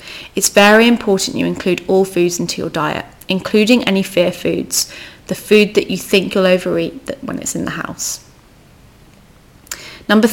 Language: English